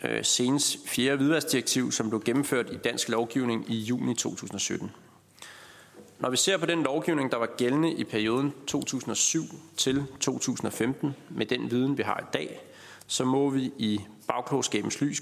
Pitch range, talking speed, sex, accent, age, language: 115-140 Hz, 140 wpm, male, native, 30-49, Danish